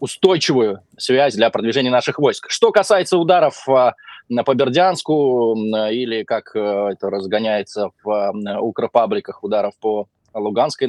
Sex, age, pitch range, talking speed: male, 20-39, 120-155 Hz, 110 wpm